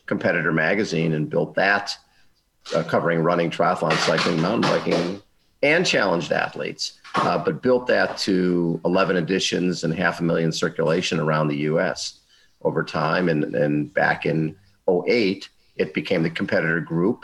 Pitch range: 80-95 Hz